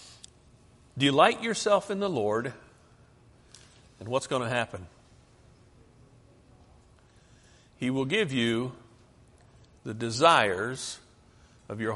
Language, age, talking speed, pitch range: English, 60-79, 90 wpm, 120-170 Hz